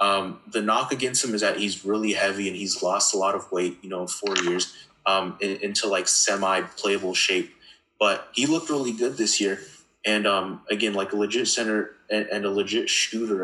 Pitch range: 95-105 Hz